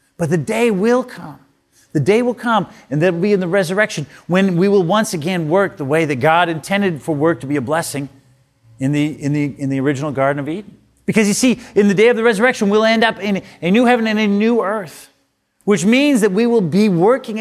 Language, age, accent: Dutch, 40-59, American